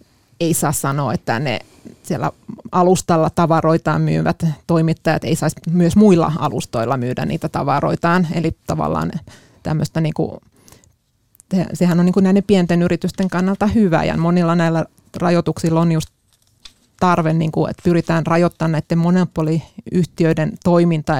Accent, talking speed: native, 135 wpm